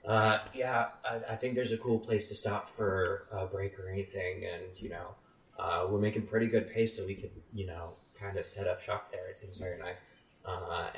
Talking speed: 225 wpm